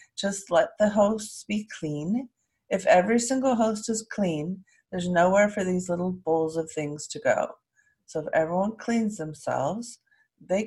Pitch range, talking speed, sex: 150-195 Hz, 155 wpm, female